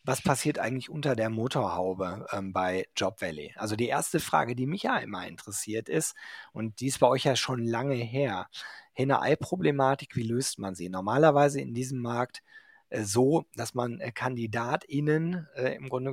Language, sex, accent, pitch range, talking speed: German, male, German, 115-145 Hz, 170 wpm